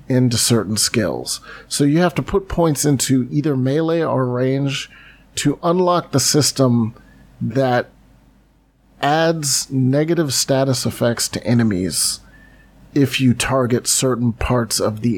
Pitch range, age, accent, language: 120-140 Hz, 40-59, American, English